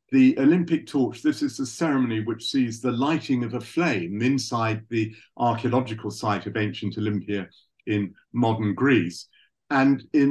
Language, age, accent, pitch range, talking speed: English, 50-69, British, 115-140 Hz, 150 wpm